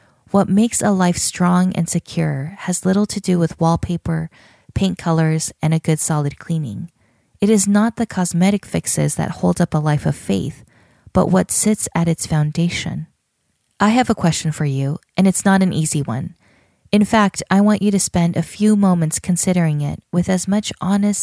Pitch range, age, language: 155-190 Hz, 20-39, English